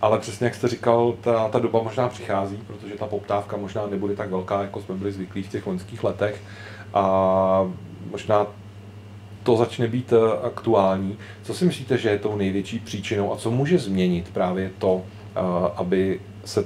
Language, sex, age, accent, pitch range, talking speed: Czech, male, 40-59, native, 100-115 Hz, 170 wpm